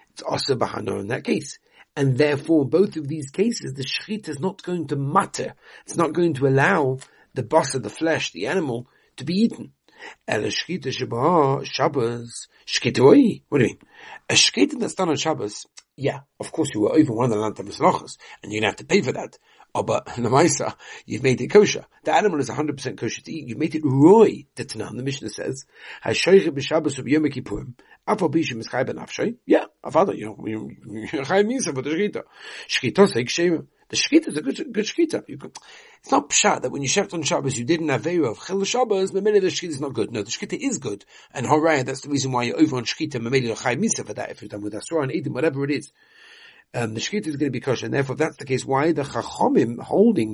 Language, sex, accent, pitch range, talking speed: English, male, British, 130-195 Hz, 210 wpm